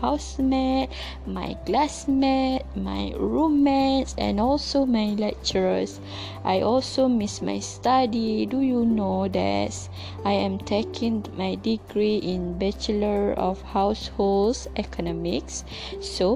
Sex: female